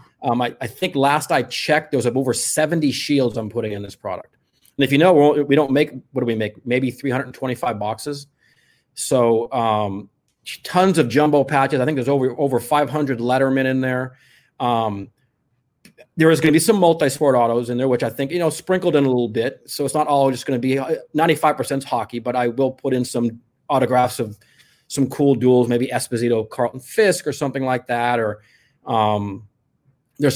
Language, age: English, 30-49